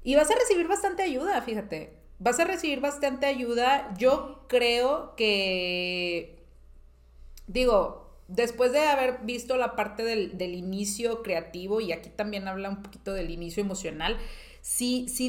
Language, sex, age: Spanish, female, 30-49